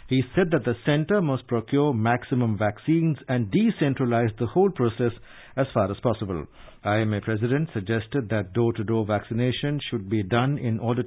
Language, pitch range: English, 115-145 Hz